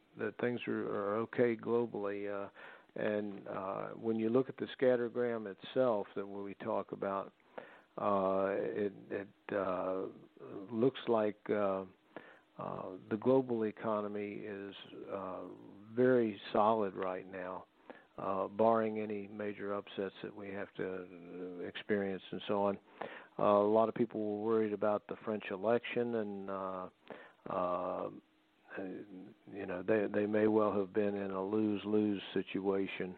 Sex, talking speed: male, 135 wpm